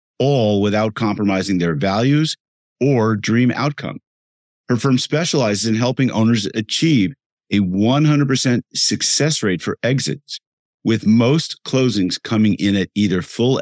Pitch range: 100-130 Hz